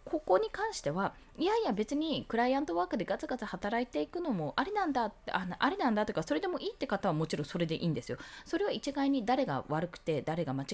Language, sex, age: Japanese, female, 20-39